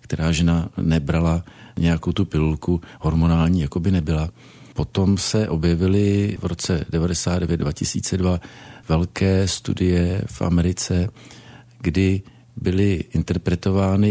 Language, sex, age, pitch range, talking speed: Czech, male, 50-69, 85-95 Hz, 100 wpm